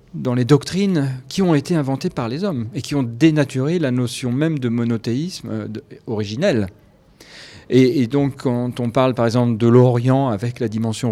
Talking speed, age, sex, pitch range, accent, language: 185 wpm, 40-59, male, 110-140 Hz, French, French